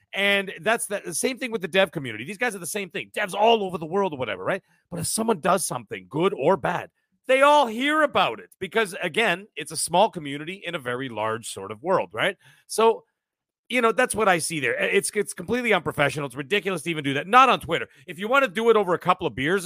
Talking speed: 255 wpm